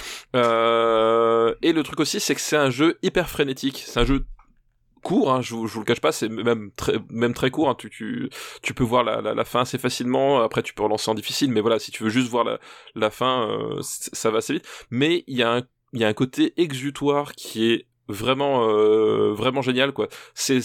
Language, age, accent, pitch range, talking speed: French, 20-39, French, 115-140 Hz, 225 wpm